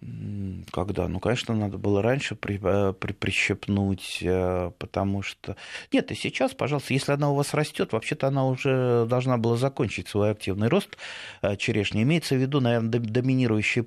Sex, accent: male, native